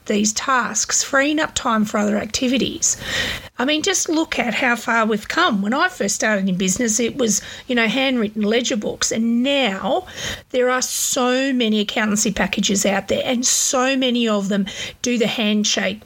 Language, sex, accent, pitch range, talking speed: English, female, Australian, 210-250 Hz, 180 wpm